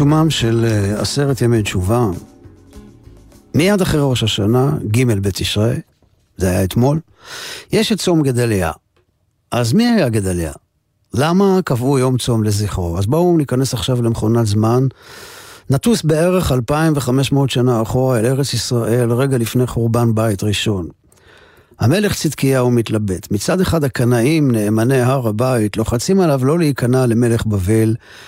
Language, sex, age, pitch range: Hebrew, male, 50-69, 110-145 Hz